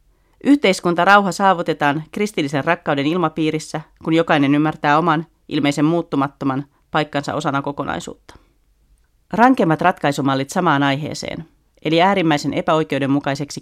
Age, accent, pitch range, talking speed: 30-49, native, 140-170 Hz, 95 wpm